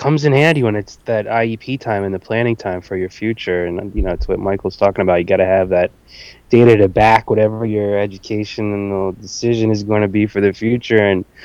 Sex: male